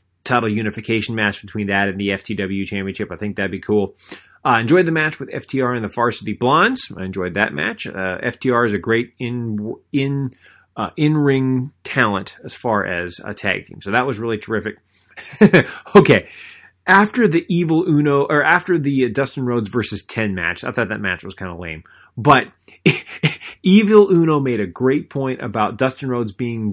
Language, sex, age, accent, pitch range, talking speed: English, male, 30-49, American, 95-130 Hz, 185 wpm